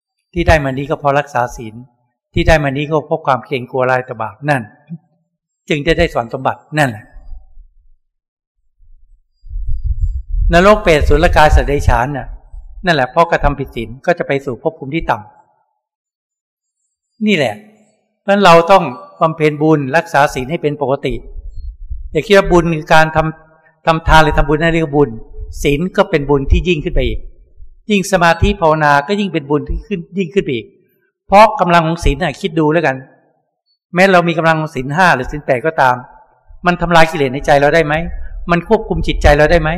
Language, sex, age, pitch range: Thai, male, 60-79, 130-180 Hz